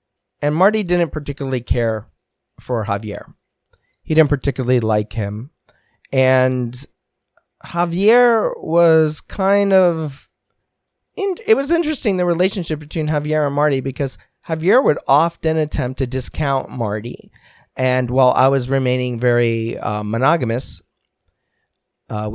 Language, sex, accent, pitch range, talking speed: English, male, American, 110-145 Hz, 115 wpm